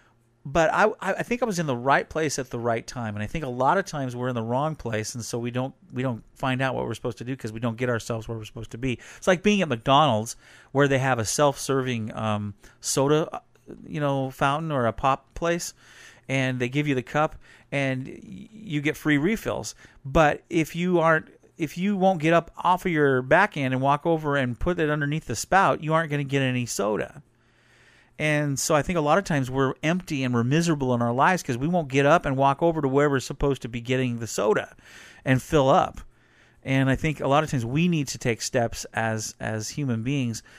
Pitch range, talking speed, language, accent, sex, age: 125-160 Hz, 240 wpm, English, American, male, 40-59